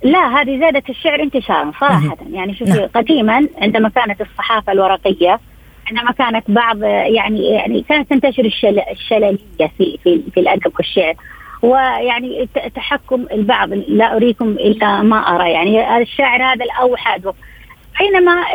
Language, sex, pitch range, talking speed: Arabic, female, 230-300 Hz, 125 wpm